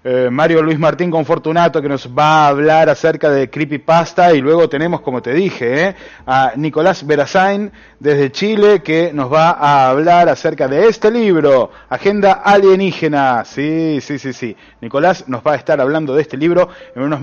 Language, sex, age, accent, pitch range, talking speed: Spanish, male, 30-49, Argentinian, 150-185 Hz, 175 wpm